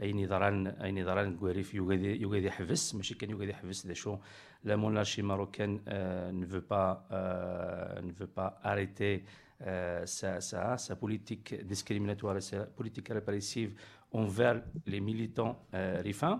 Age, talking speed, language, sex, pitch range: 50-69, 95 wpm, French, male, 95-120 Hz